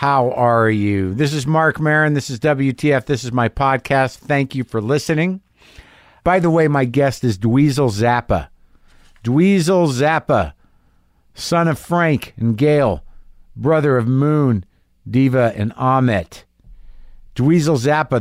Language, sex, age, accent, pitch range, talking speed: English, male, 50-69, American, 115-155 Hz, 135 wpm